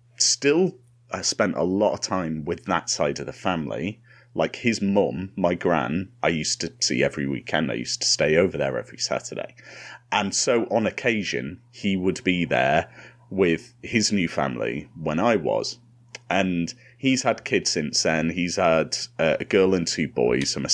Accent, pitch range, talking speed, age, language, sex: British, 85-120 Hz, 180 wpm, 30-49, English, male